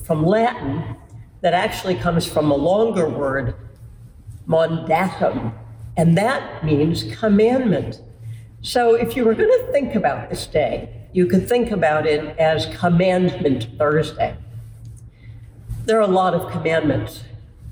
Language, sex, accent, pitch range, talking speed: English, female, American, 115-185 Hz, 130 wpm